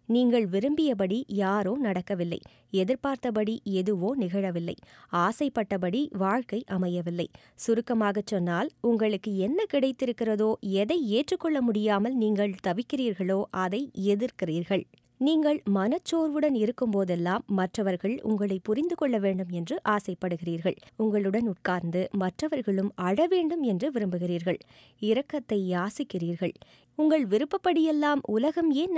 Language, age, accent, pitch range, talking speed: Tamil, 20-39, native, 195-285 Hz, 90 wpm